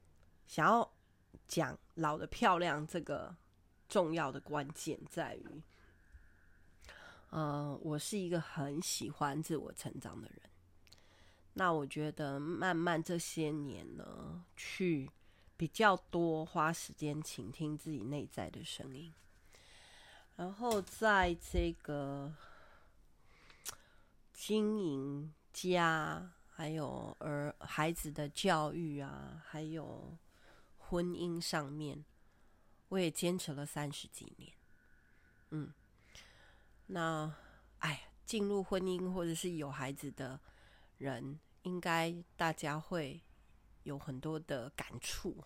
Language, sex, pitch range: Chinese, female, 115-170 Hz